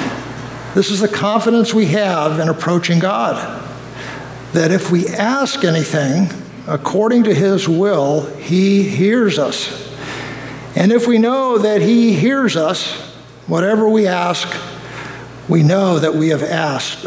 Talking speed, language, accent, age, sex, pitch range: 135 wpm, English, American, 60-79, male, 165-215 Hz